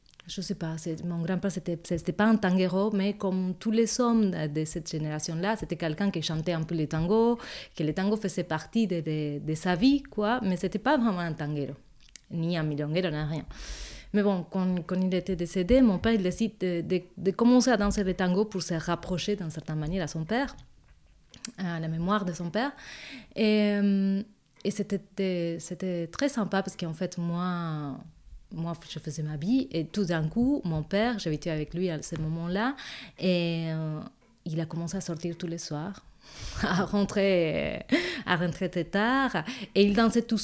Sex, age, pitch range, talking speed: female, 30-49, 165-205 Hz, 195 wpm